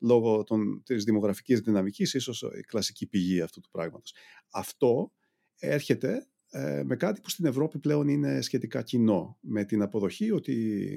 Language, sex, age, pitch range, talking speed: Greek, male, 40-59, 95-135 Hz, 140 wpm